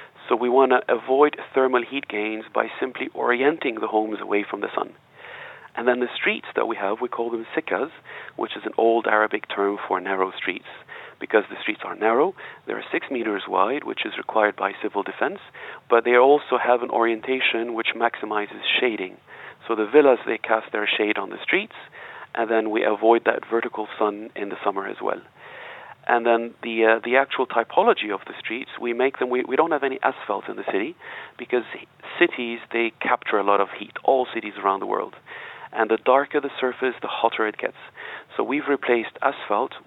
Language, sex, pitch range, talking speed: English, male, 110-130 Hz, 200 wpm